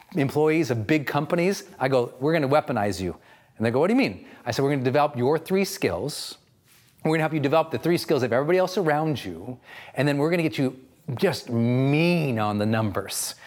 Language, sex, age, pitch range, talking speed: English, male, 40-59, 135-195 Hz, 220 wpm